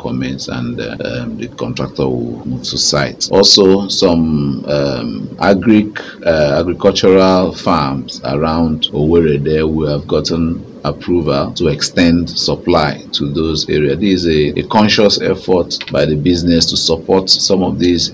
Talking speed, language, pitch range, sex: 145 wpm, English, 70-90 Hz, male